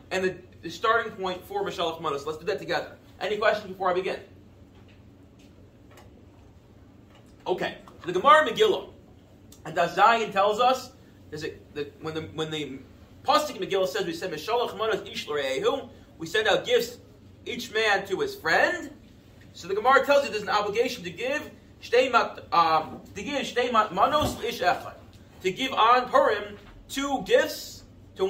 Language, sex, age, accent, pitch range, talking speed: English, male, 30-49, American, 175-265 Hz, 140 wpm